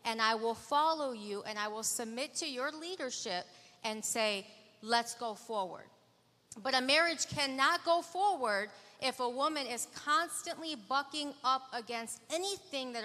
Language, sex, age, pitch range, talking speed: English, female, 40-59, 235-295 Hz, 150 wpm